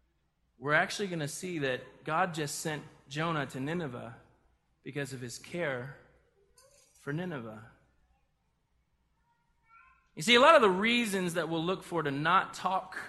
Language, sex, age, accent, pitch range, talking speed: English, male, 20-39, American, 140-210 Hz, 145 wpm